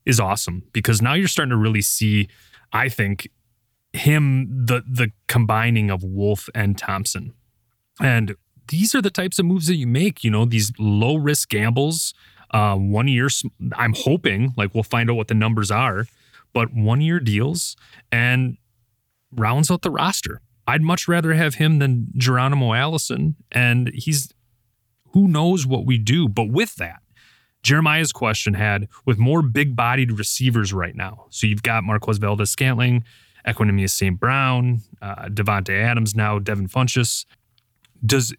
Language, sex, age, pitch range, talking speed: English, male, 30-49, 105-135 Hz, 150 wpm